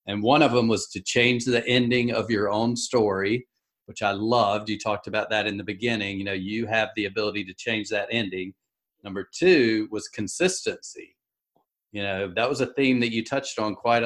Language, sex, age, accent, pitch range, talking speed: English, male, 40-59, American, 105-125 Hz, 205 wpm